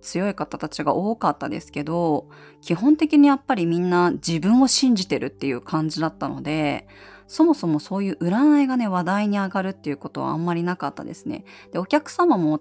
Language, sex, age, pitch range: Japanese, female, 20-39, 150-220 Hz